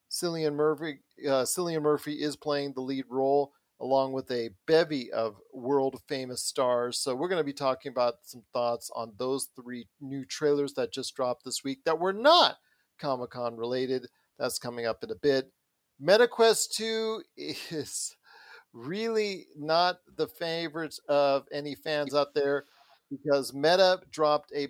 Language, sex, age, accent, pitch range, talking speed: English, male, 40-59, American, 130-165 Hz, 150 wpm